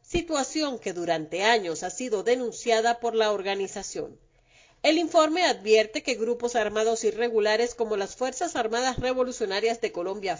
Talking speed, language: 140 wpm, Spanish